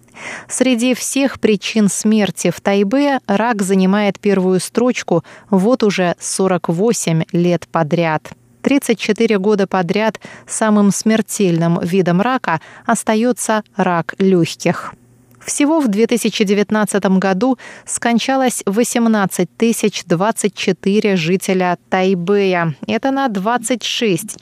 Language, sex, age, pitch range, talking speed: Russian, female, 20-39, 180-225 Hz, 90 wpm